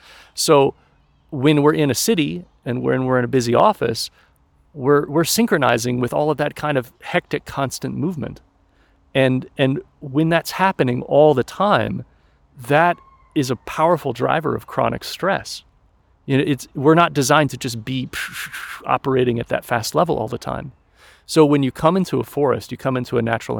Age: 40-59